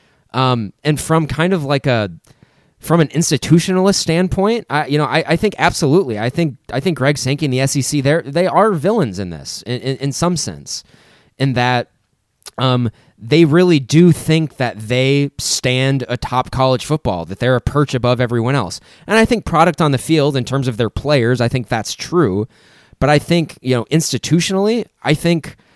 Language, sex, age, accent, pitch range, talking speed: English, male, 20-39, American, 120-155 Hz, 190 wpm